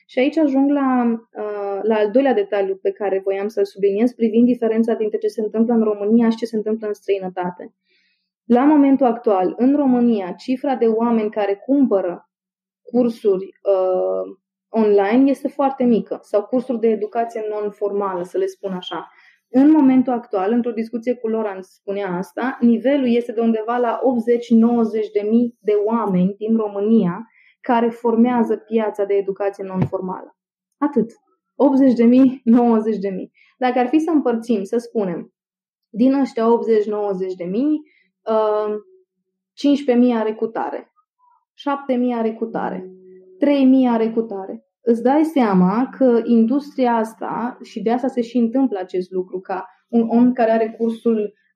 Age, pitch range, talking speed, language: 20-39, 200-245 Hz, 145 wpm, Romanian